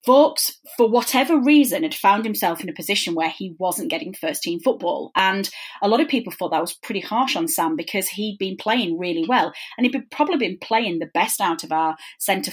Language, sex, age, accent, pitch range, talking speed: English, female, 30-49, British, 180-280 Hz, 225 wpm